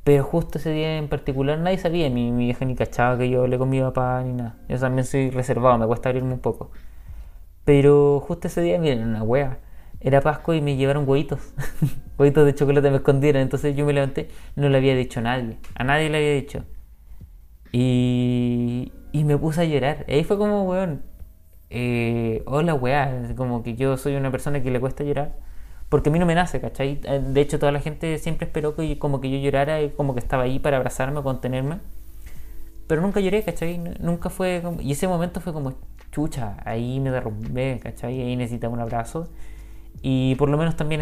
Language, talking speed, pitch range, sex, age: Spanish, 210 wpm, 125-150 Hz, male, 20-39